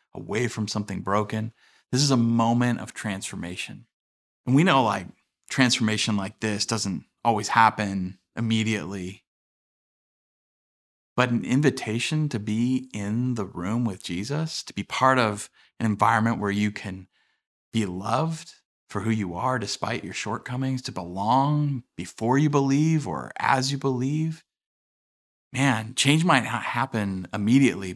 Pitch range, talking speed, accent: 100-125 Hz, 135 wpm, American